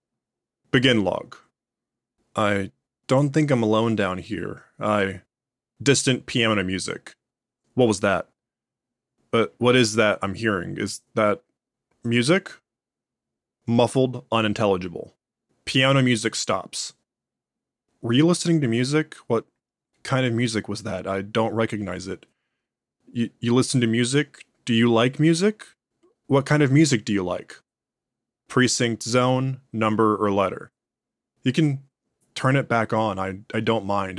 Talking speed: 135 wpm